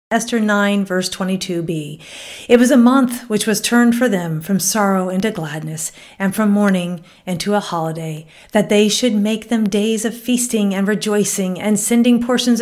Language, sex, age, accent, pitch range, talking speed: English, female, 40-59, American, 195-250 Hz, 170 wpm